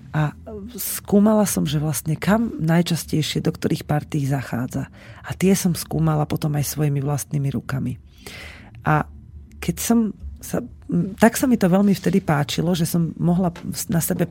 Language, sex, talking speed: Slovak, female, 145 wpm